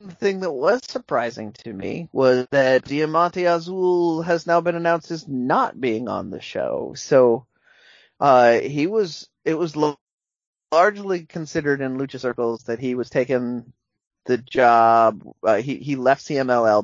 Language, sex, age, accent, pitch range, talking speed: English, male, 30-49, American, 115-145 Hz, 155 wpm